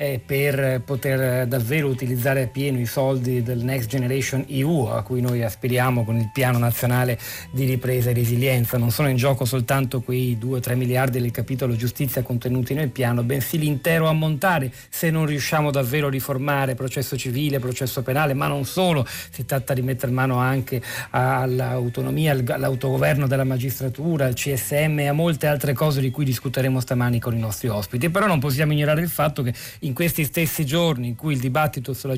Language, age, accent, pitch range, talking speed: Italian, 40-59, native, 125-145 Hz, 175 wpm